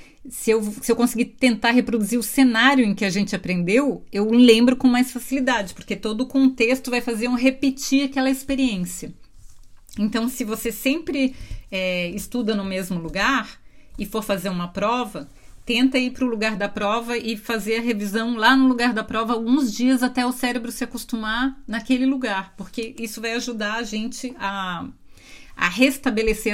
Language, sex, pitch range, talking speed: Portuguese, female, 200-255 Hz, 175 wpm